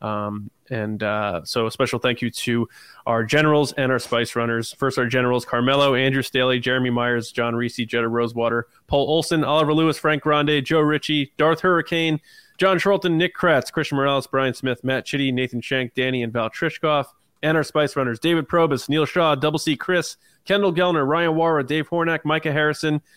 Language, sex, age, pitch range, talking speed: English, male, 20-39, 120-150 Hz, 185 wpm